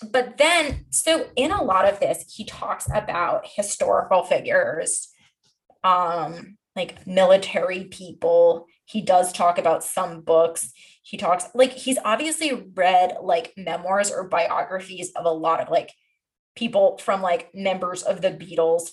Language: English